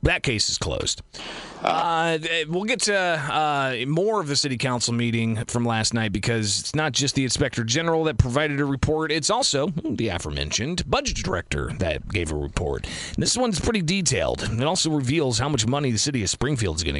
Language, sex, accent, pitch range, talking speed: English, male, American, 105-150 Hz, 195 wpm